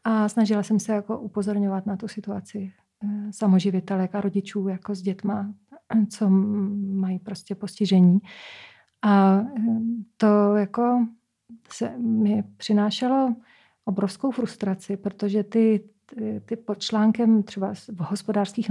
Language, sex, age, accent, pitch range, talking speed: Czech, female, 40-59, native, 195-225 Hz, 115 wpm